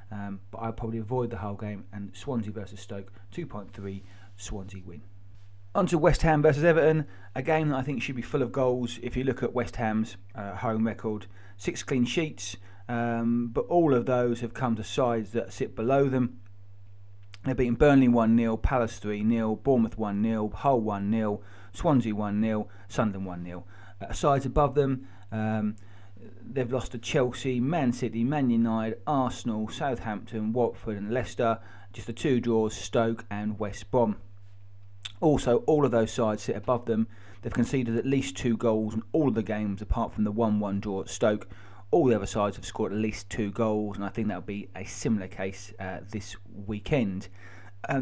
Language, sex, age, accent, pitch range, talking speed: English, male, 30-49, British, 100-125 Hz, 185 wpm